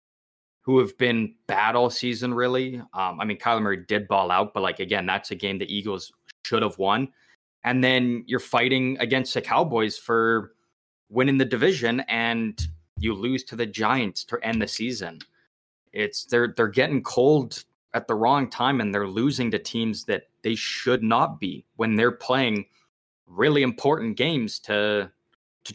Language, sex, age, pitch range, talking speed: English, male, 20-39, 105-125 Hz, 170 wpm